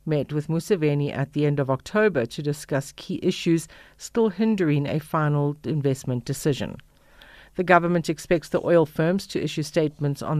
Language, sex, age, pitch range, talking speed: English, female, 50-69, 140-170 Hz, 160 wpm